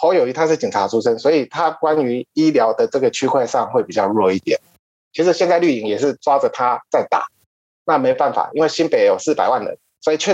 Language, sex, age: Chinese, male, 20-39